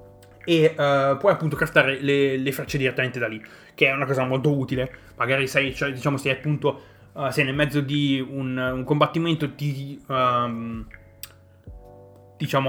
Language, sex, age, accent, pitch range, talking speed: Italian, male, 20-39, native, 130-155 Hz, 160 wpm